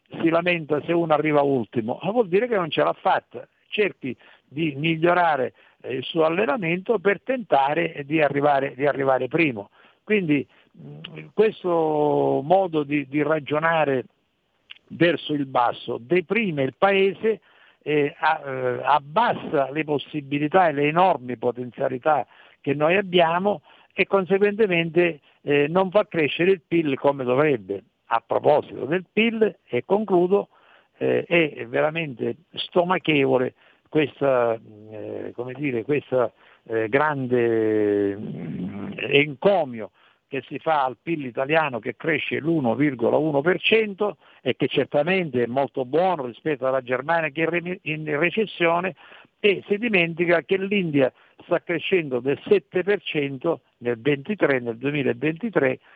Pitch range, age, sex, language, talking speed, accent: 135-175 Hz, 60-79, male, Italian, 115 wpm, native